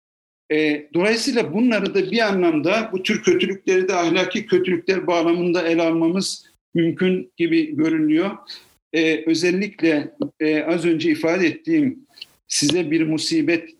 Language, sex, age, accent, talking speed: Turkish, male, 50-69, native, 110 wpm